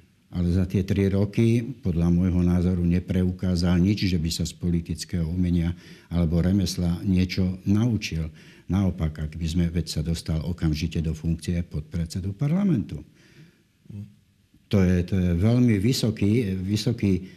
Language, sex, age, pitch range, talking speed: Slovak, male, 60-79, 90-110 Hz, 140 wpm